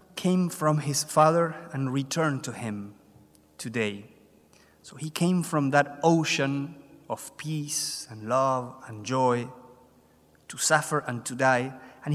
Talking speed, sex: 135 wpm, male